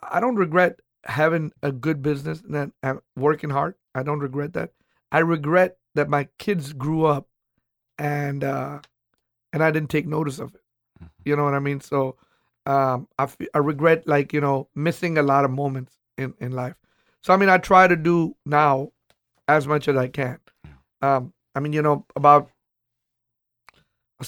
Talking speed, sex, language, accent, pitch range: 180 wpm, male, English, American, 135-155 Hz